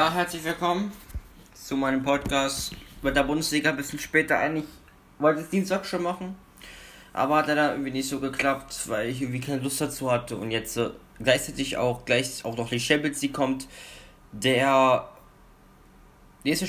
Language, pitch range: German, 105-140 Hz